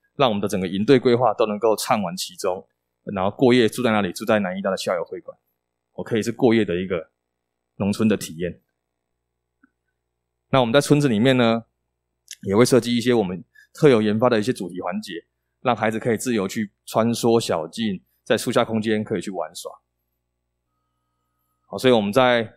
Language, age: Chinese, 20-39